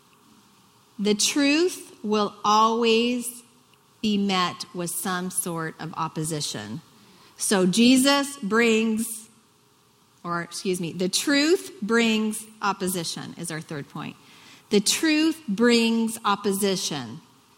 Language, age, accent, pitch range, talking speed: English, 40-59, American, 190-260 Hz, 100 wpm